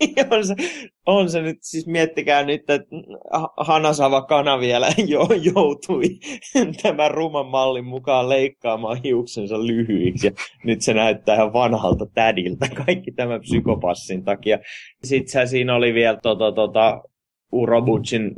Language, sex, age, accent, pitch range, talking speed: Finnish, male, 20-39, native, 105-145 Hz, 125 wpm